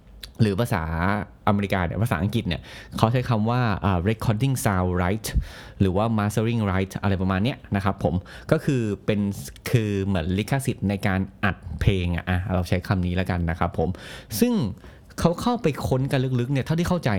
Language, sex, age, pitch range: Thai, male, 20-39, 100-130 Hz